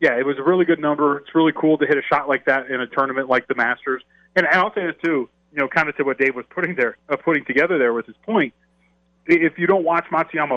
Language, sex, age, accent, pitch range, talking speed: English, male, 30-49, American, 135-165 Hz, 285 wpm